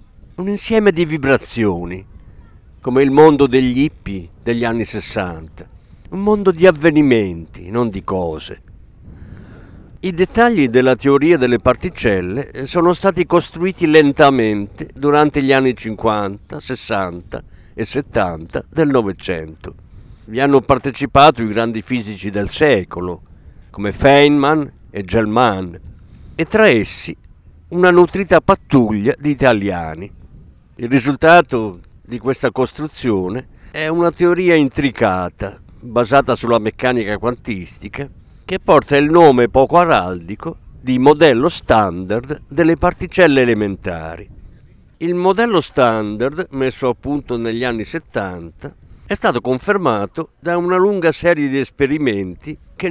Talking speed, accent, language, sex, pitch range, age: 115 wpm, native, Italian, male, 100-160 Hz, 50-69